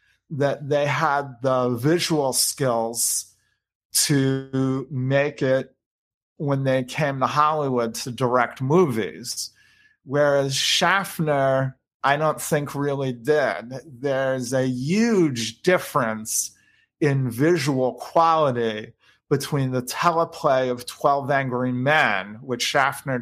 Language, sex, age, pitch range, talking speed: English, male, 40-59, 125-155 Hz, 105 wpm